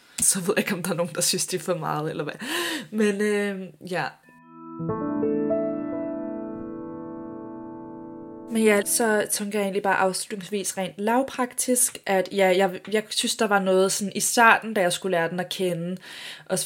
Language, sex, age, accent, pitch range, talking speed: Danish, female, 20-39, native, 170-205 Hz, 175 wpm